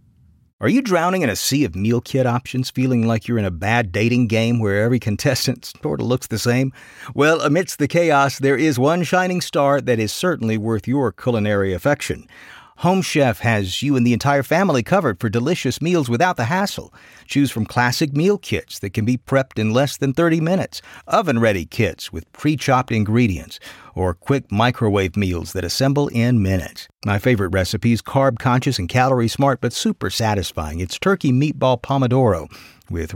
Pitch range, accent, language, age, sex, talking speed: 105-145 Hz, American, English, 50-69, male, 180 wpm